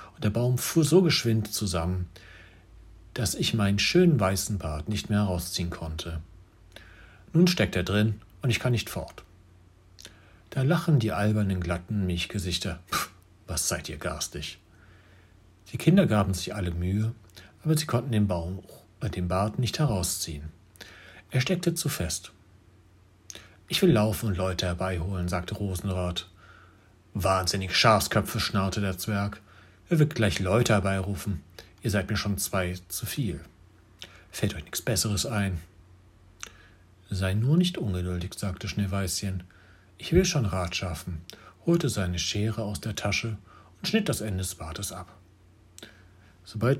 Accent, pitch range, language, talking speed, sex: German, 90-105 Hz, German, 140 wpm, male